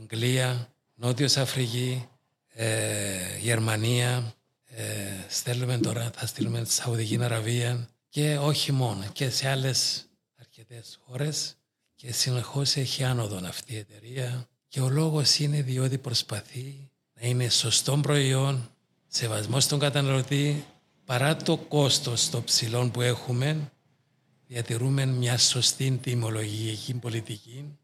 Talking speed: 110 wpm